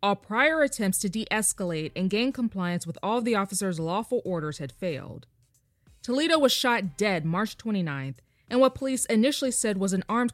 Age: 20-39